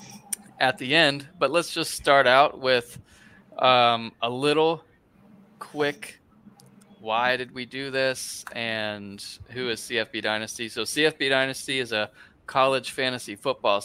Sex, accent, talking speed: male, American, 135 wpm